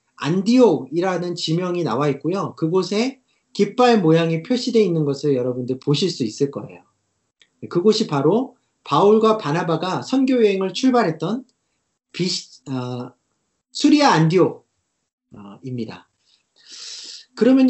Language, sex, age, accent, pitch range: Korean, male, 40-59, native, 150-230 Hz